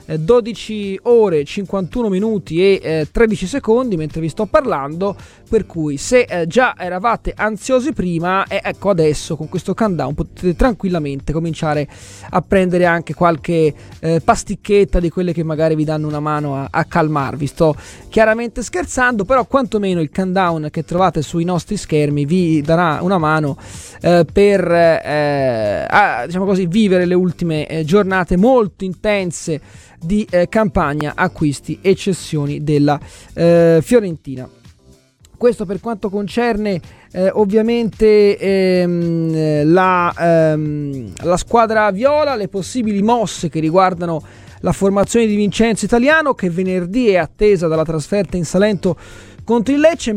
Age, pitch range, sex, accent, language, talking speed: 20-39, 160-215 Hz, male, native, Italian, 140 wpm